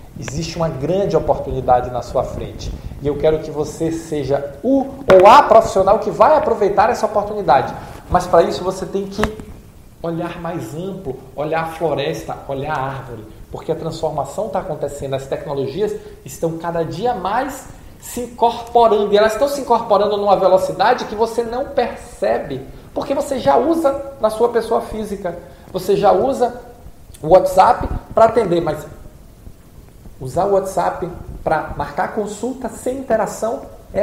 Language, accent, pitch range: Portuguese, Brazilian, 155-220 Hz